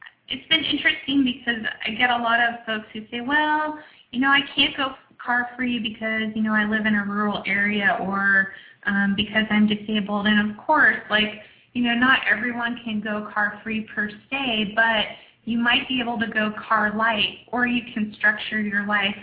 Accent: American